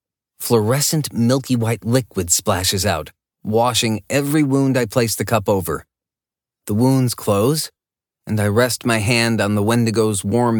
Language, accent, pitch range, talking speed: English, American, 100-125 Hz, 140 wpm